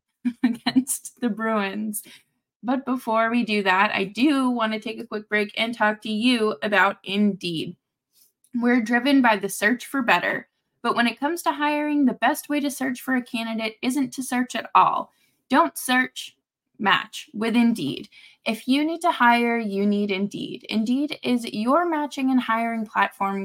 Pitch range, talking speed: 210-265 Hz, 175 wpm